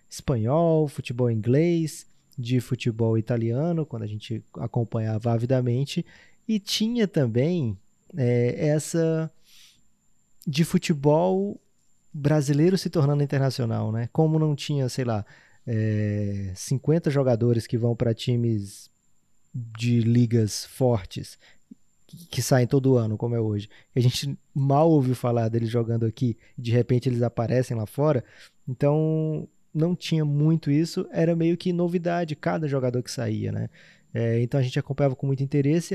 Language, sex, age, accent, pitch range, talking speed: Portuguese, male, 20-39, Brazilian, 115-160 Hz, 130 wpm